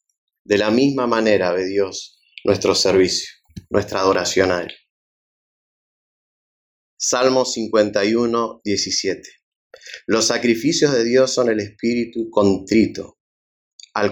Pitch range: 100-125 Hz